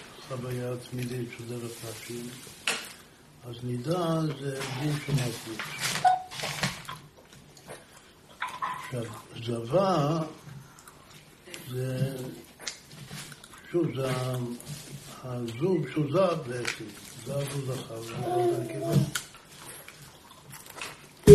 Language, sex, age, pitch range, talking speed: Hebrew, male, 60-79, 120-150 Hz, 50 wpm